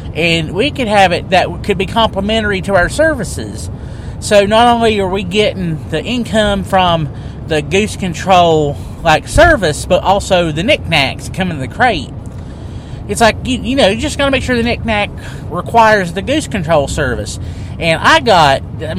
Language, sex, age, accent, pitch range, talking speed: English, male, 30-49, American, 150-235 Hz, 175 wpm